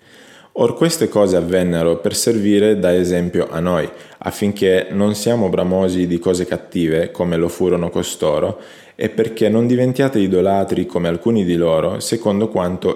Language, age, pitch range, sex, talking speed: Italian, 20-39, 90-110 Hz, male, 150 wpm